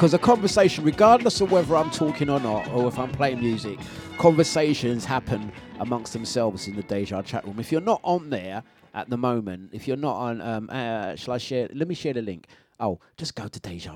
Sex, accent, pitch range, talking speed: male, British, 110-145 Hz, 220 wpm